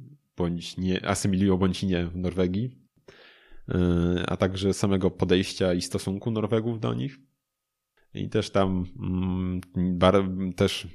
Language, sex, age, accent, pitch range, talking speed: Polish, male, 20-39, native, 90-100 Hz, 115 wpm